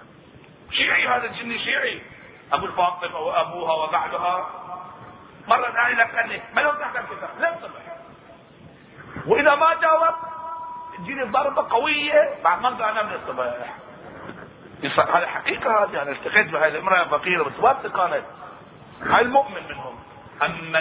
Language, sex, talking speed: Arabic, male, 120 wpm